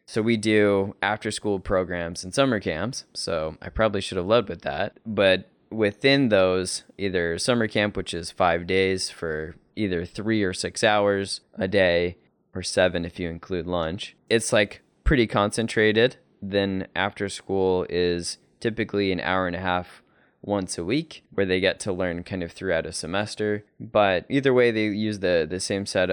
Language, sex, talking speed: English, male, 175 wpm